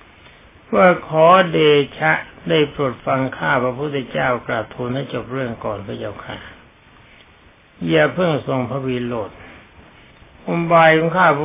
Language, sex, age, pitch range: Thai, male, 60-79, 120-155 Hz